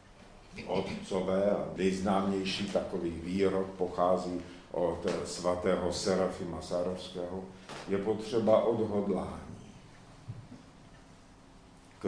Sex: male